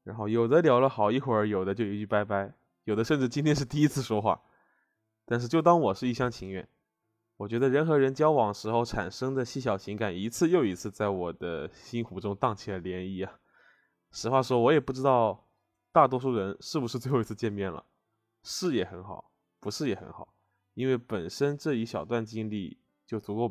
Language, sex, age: Chinese, male, 20-39